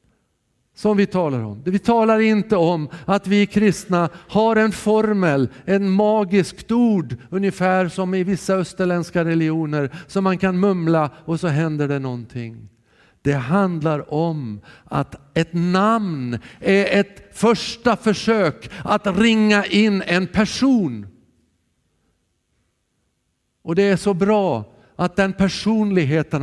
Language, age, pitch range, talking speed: Swedish, 50-69, 150-195 Hz, 125 wpm